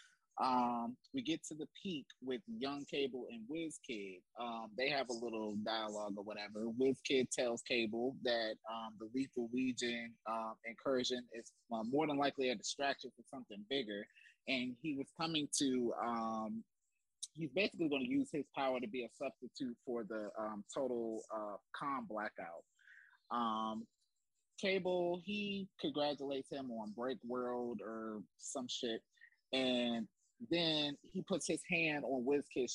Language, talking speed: English, 155 wpm